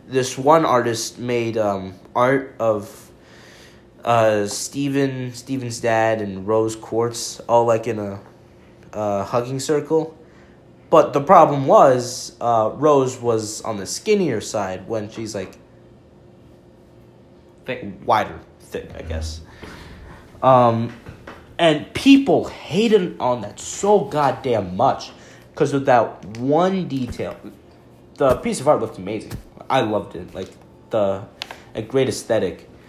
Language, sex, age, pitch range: English, male, 20-39, 100-155 Hz